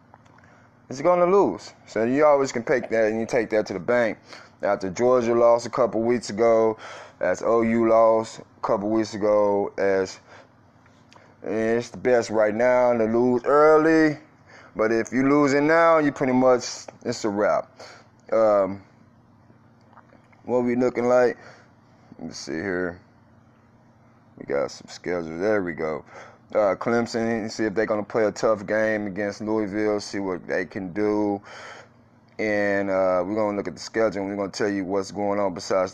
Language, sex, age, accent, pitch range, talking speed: English, male, 20-39, American, 105-120 Hz, 180 wpm